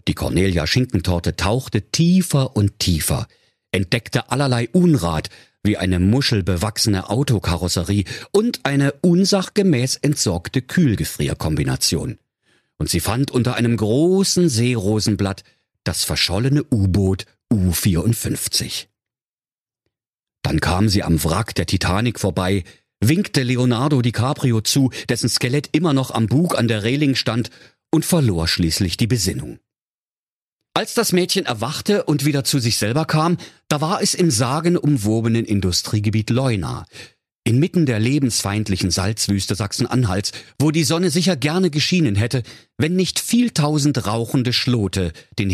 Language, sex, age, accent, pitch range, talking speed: German, male, 50-69, German, 100-145 Hz, 120 wpm